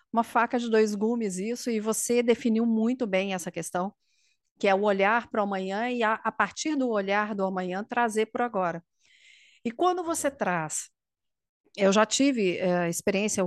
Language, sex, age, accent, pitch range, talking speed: Portuguese, female, 40-59, Brazilian, 195-255 Hz, 185 wpm